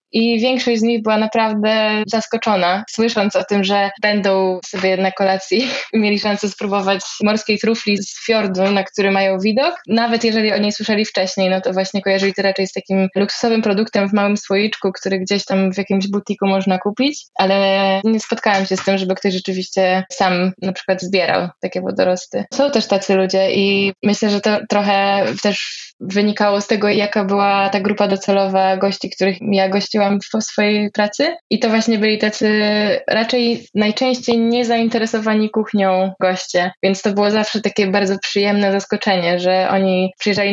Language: Polish